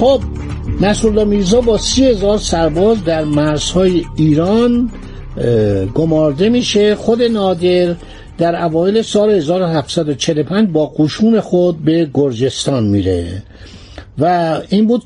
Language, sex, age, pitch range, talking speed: Persian, male, 60-79, 145-205 Hz, 110 wpm